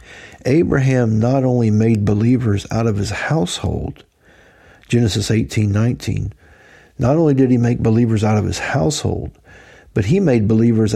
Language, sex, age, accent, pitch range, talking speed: English, male, 50-69, American, 110-135 Hz, 135 wpm